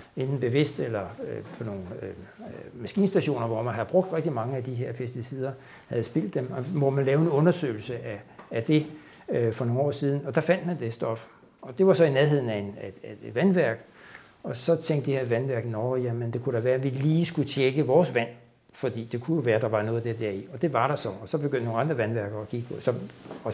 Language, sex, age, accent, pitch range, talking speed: Danish, male, 60-79, native, 120-165 Hz, 245 wpm